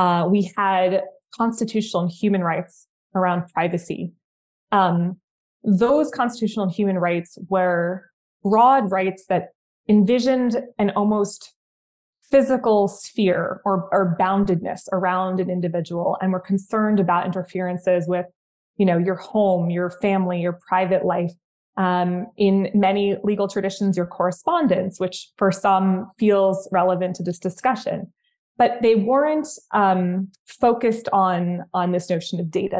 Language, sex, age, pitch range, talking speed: English, female, 20-39, 180-205 Hz, 130 wpm